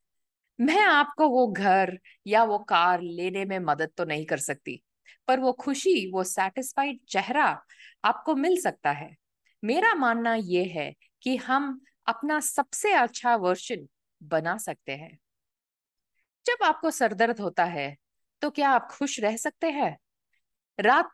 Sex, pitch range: female, 185-285 Hz